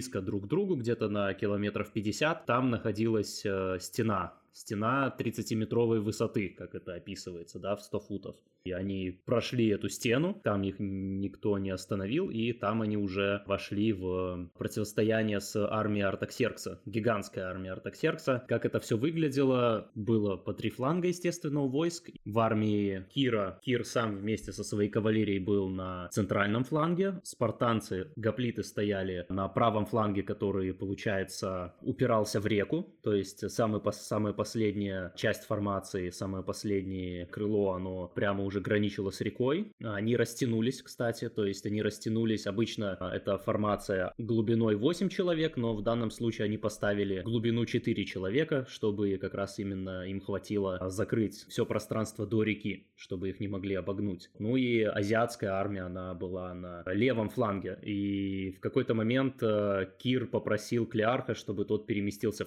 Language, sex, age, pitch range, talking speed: Russian, male, 20-39, 100-115 Hz, 145 wpm